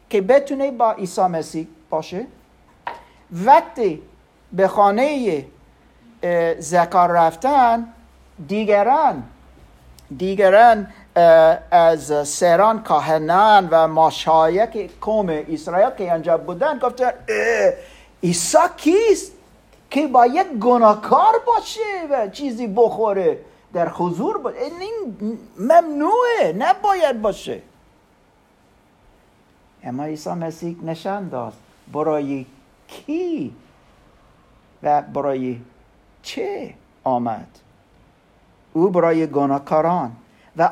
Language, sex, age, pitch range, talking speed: Persian, male, 50-69, 160-255 Hz, 85 wpm